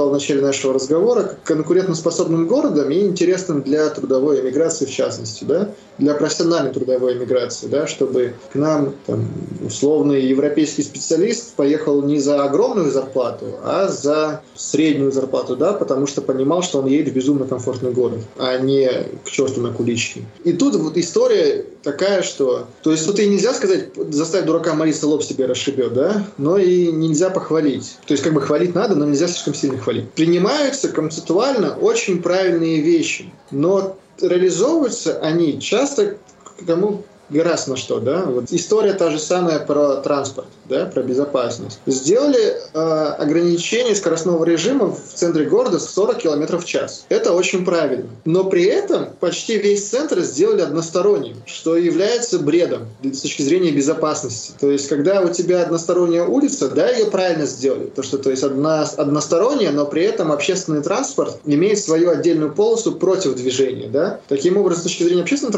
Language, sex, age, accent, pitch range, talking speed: Russian, male, 20-39, native, 140-185 Hz, 160 wpm